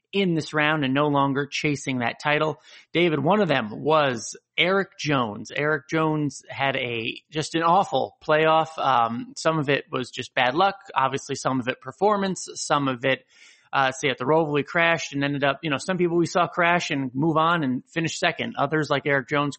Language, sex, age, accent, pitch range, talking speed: English, male, 30-49, American, 135-180 Hz, 205 wpm